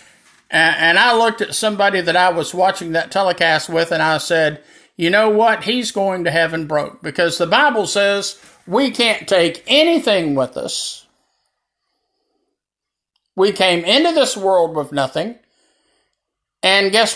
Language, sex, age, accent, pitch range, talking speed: English, male, 50-69, American, 170-220 Hz, 145 wpm